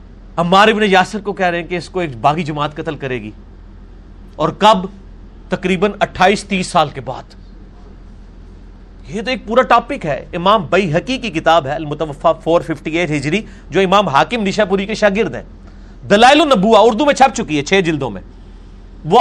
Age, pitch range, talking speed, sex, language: 40-59, 135-225 Hz, 170 wpm, male, Urdu